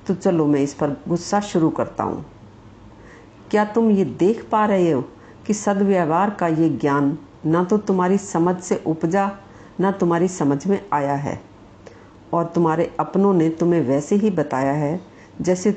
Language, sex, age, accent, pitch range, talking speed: Hindi, female, 50-69, native, 155-205 Hz, 165 wpm